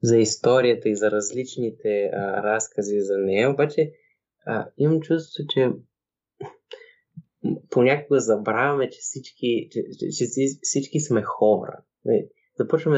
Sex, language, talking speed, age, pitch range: male, Bulgarian, 110 wpm, 20-39, 105-135 Hz